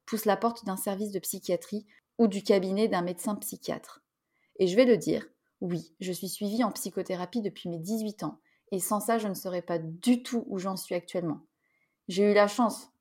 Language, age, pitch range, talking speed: French, 30-49, 180-230 Hz, 210 wpm